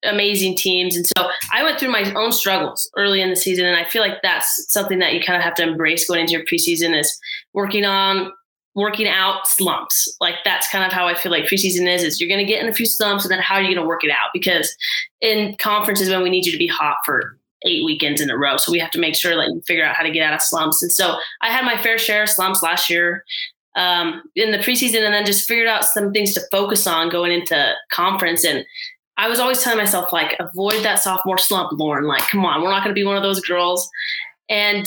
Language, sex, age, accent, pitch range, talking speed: English, female, 20-39, American, 175-210 Hz, 260 wpm